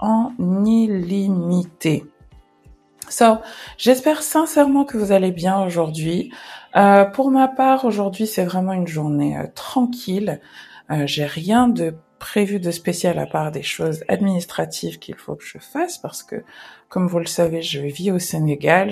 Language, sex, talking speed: English, female, 150 wpm